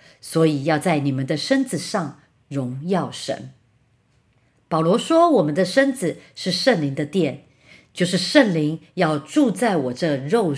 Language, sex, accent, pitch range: Chinese, female, American, 140-195 Hz